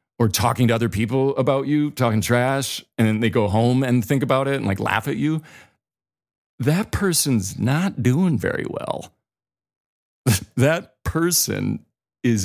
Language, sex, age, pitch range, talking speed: English, male, 40-59, 105-125 Hz, 155 wpm